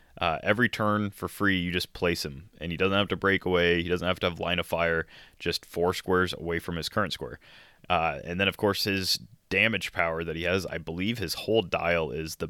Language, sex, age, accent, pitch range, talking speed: English, male, 20-39, American, 85-105 Hz, 235 wpm